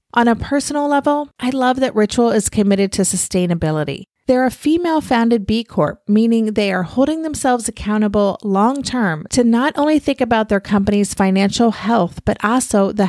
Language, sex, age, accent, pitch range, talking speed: English, female, 30-49, American, 195-255 Hz, 165 wpm